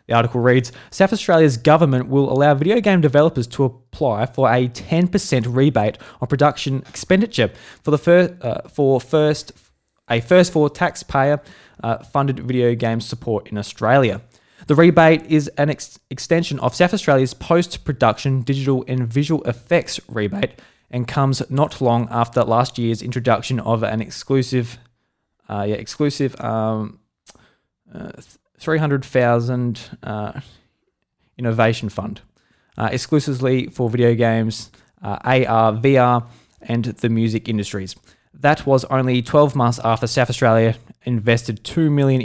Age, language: 20-39, English